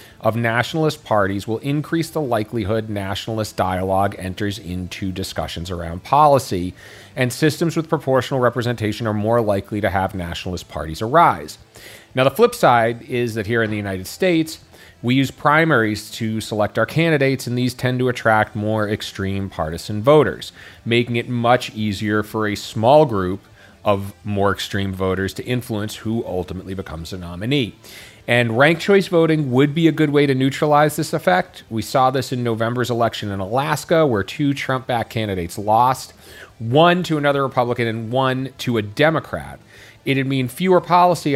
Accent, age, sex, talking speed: American, 30-49, male, 160 wpm